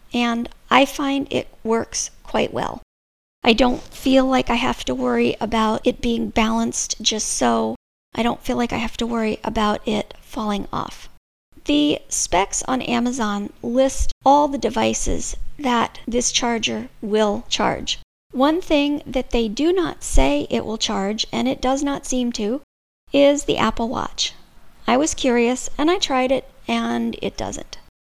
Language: English